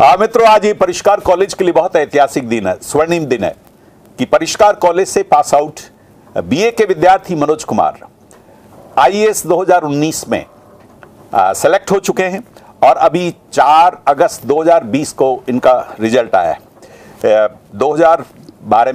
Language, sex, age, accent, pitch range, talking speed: Hindi, male, 50-69, native, 115-170 Hz, 145 wpm